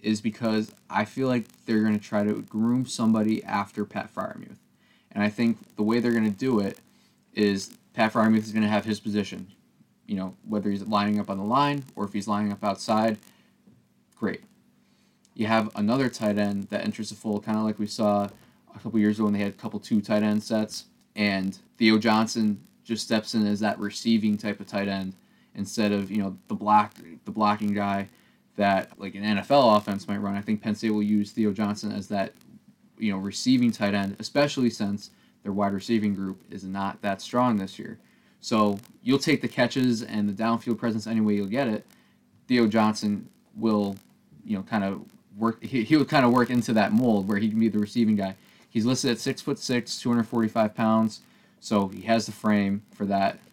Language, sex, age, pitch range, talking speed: English, male, 20-39, 105-115 Hz, 210 wpm